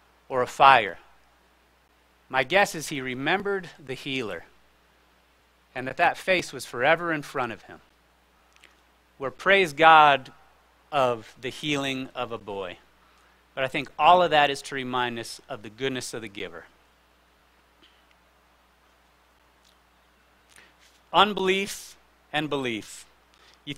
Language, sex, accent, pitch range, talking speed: English, male, American, 115-150 Hz, 125 wpm